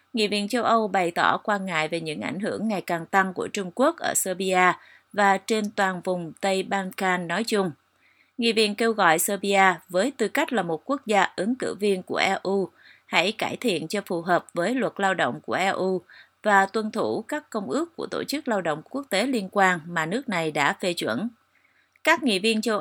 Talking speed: 215 wpm